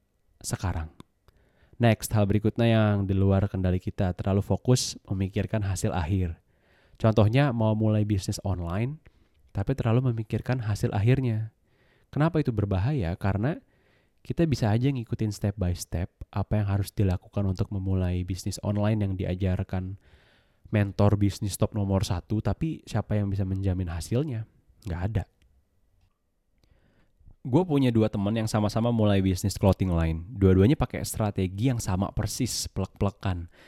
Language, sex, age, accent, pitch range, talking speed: Indonesian, male, 20-39, native, 95-115 Hz, 135 wpm